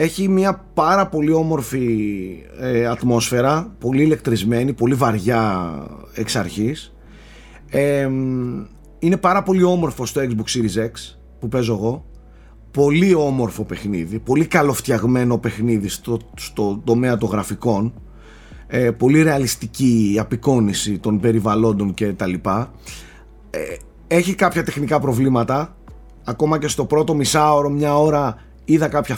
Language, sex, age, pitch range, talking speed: Greek, male, 30-49, 115-155 Hz, 125 wpm